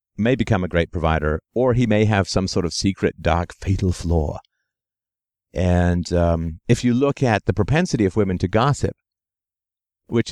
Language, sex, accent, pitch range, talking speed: English, male, American, 85-110 Hz, 170 wpm